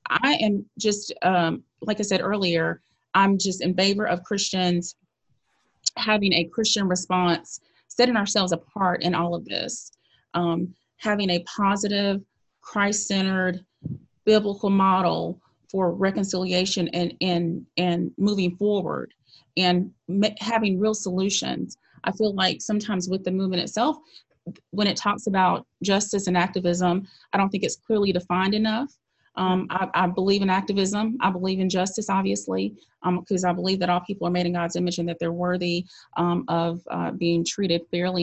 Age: 30-49